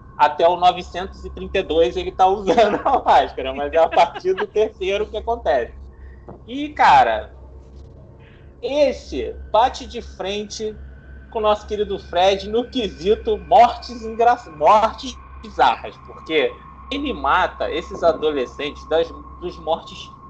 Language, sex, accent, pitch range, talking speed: Portuguese, male, Brazilian, 170-240 Hz, 120 wpm